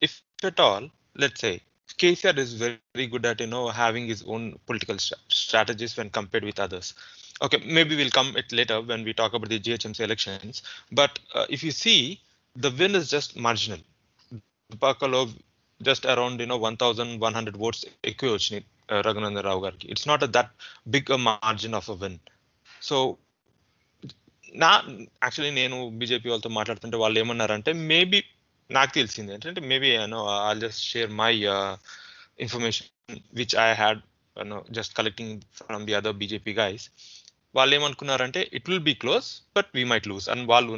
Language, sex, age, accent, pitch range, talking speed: Telugu, male, 20-39, native, 110-135 Hz, 170 wpm